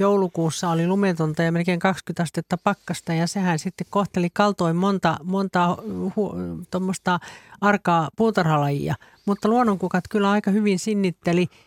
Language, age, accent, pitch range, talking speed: Finnish, 40-59, native, 170-200 Hz, 125 wpm